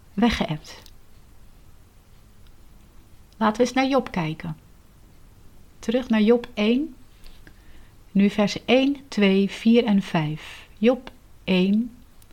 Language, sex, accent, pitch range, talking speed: Dutch, female, Dutch, 165-225 Hz, 95 wpm